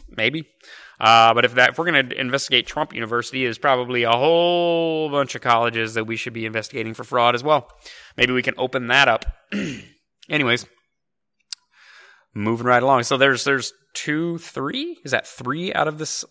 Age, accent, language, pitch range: 30-49, American, English, 120-155 Hz